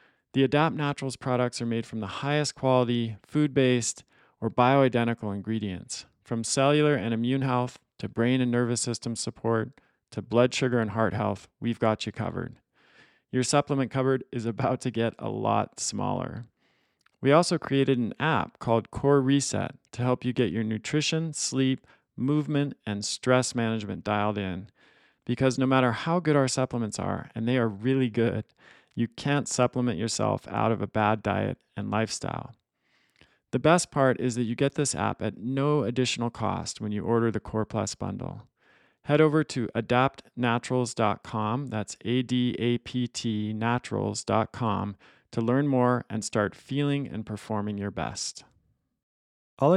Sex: male